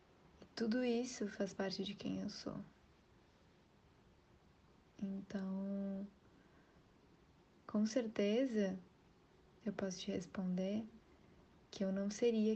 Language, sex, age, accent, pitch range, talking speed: Portuguese, female, 20-39, Brazilian, 195-215 Hz, 90 wpm